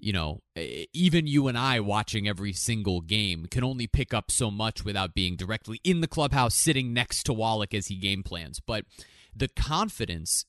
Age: 20-39